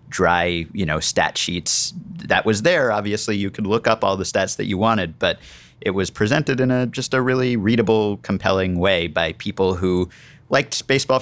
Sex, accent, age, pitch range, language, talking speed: male, American, 30-49, 90-115 Hz, English, 195 wpm